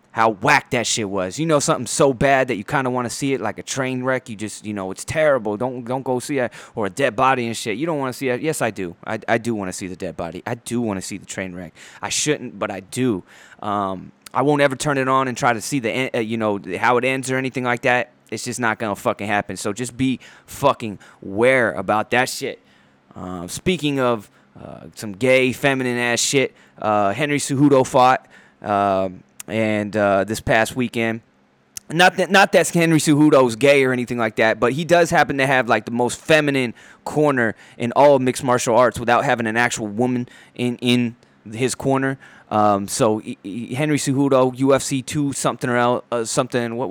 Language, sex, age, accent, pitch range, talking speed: English, male, 20-39, American, 110-135 Hz, 225 wpm